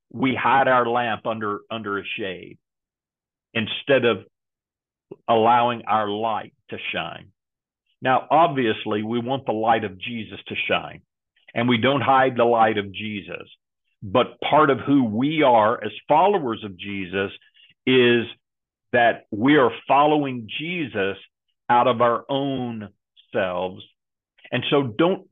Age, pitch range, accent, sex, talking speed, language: 50-69, 105-135 Hz, American, male, 135 wpm, English